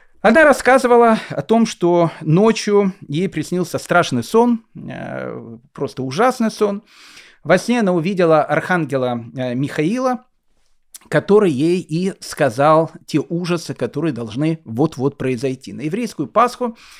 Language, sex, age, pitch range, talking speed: Russian, male, 30-49, 140-200 Hz, 115 wpm